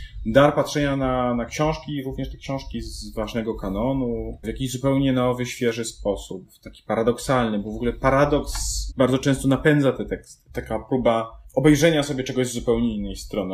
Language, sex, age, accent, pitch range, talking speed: Polish, male, 20-39, native, 110-145 Hz, 175 wpm